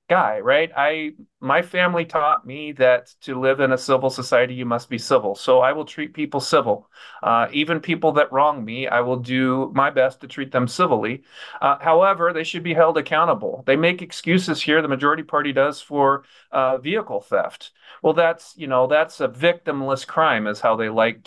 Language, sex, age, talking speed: English, male, 40-59, 195 wpm